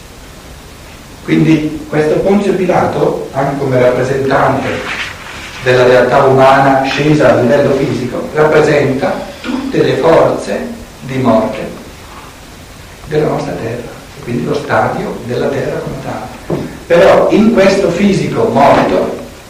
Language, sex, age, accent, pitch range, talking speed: Italian, male, 60-79, native, 115-145 Hz, 105 wpm